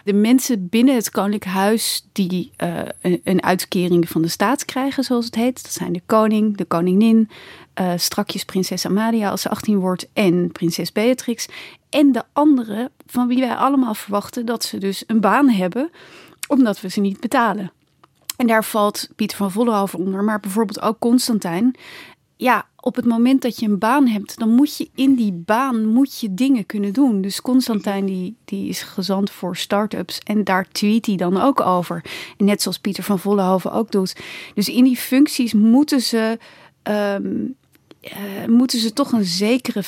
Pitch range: 195-240 Hz